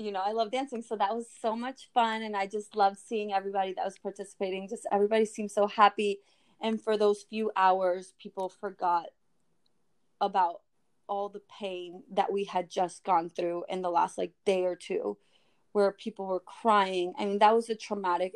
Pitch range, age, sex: 195-225 Hz, 20-39, female